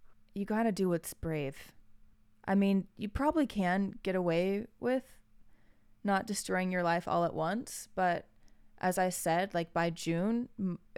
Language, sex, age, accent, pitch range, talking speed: English, female, 20-39, American, 155-195 Hz, 155 wpm